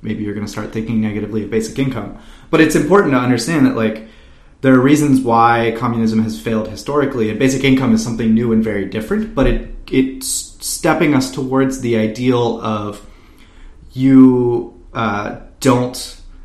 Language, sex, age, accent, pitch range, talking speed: English, male, 30-49, American, 110-130 Hz, 170 wpm